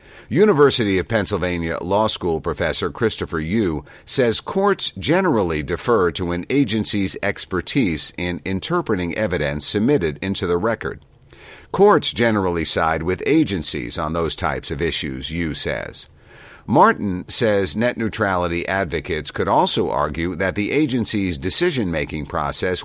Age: 50-69